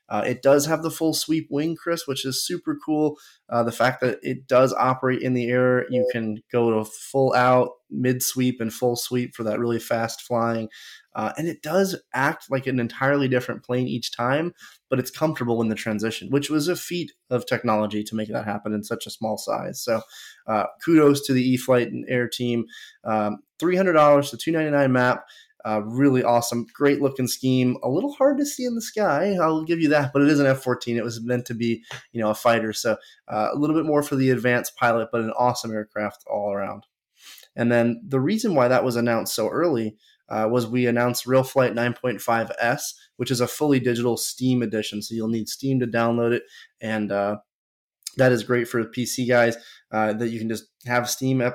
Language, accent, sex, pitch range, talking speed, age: English, American, male, 115-135 Hz, 210 wpm, 20-39